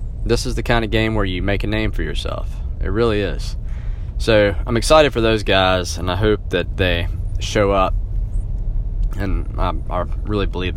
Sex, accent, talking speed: male, American, 190 wpm